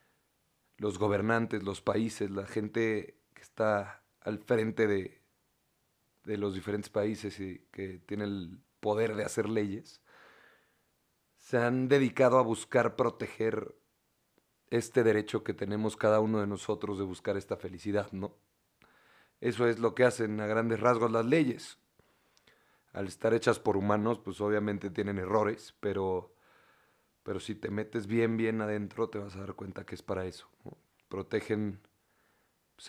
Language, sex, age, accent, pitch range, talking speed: Spanish, male, 30-49, Mexican, 100-115 Hz, 150 wpm